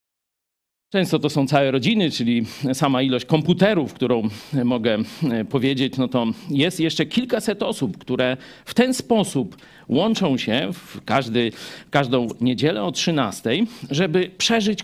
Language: Polish